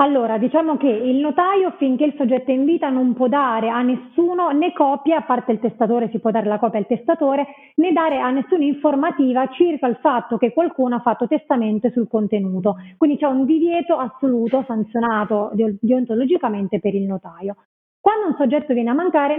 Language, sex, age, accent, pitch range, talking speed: Italian, female, 30-49, native, 230-290 Hz, 190 wpm